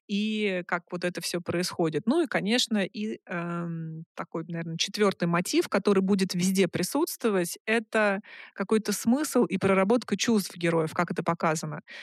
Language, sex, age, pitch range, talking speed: Russian, female, 20-39, 180-215 Hz, 145 wpm